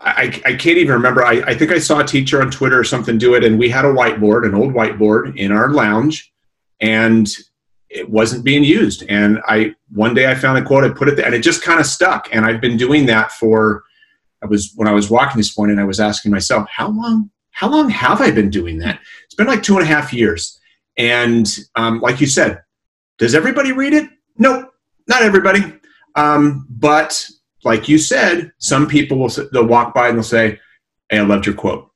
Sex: male